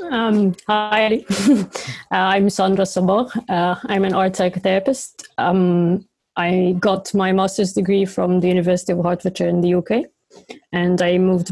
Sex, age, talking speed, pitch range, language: female, 20-39, 145 wpm, 185-210 Hz, English